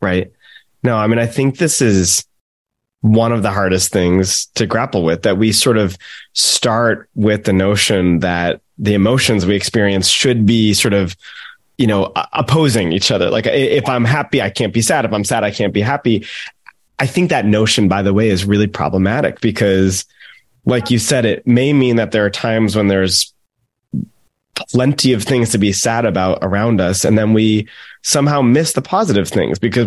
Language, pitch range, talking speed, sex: English, 100-125 Hz, 190 wpm, male